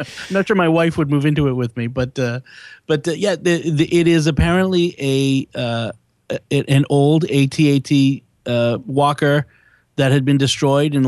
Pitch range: 130-155 Hz